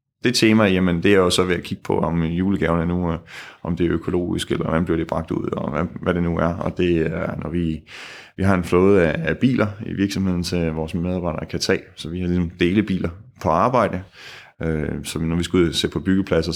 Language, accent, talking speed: Danish, native, 235 wpm